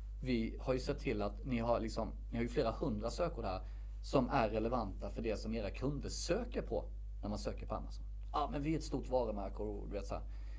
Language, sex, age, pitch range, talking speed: Swedish, male, 40-59, 100-125 Hz, 220 wpm